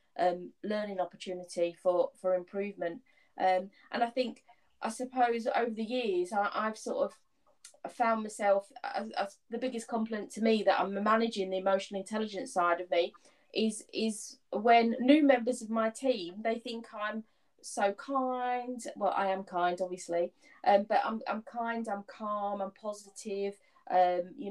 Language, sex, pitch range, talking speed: English, female, 190-230 Hz, 160 wpm